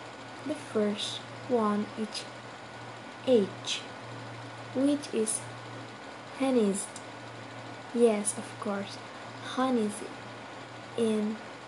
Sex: female